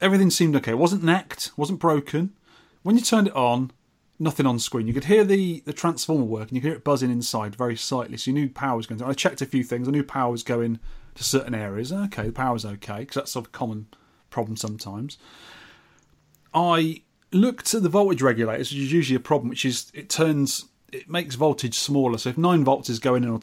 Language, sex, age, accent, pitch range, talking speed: English, male, 30-49, British, 115-150 Hz, 235 wpm